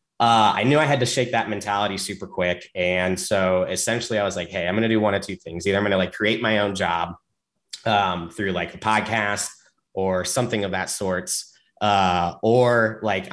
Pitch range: 95-110 Hz